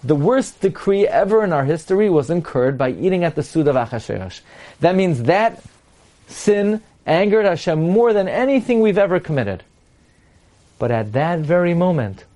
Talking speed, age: 160 wpm, 30-49